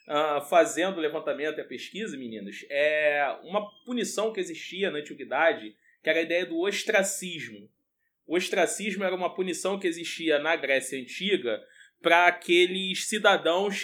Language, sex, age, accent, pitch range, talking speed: Portuguese, male, 20-39, Brazilian, 165-210 Hz, 145 wpm